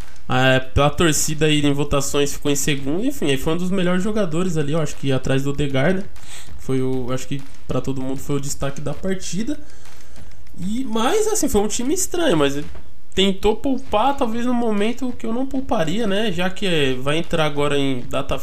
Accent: Brazilian